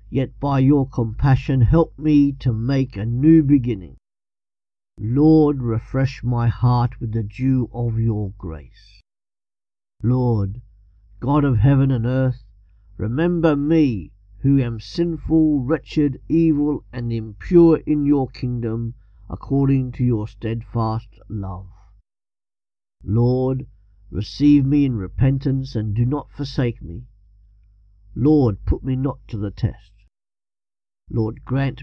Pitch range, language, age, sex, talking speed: 105-140 Hz, English, 50-69, male, 120 wpm